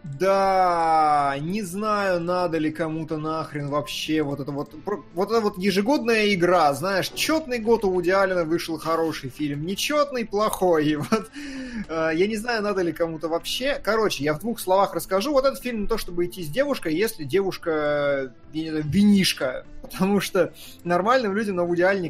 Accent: native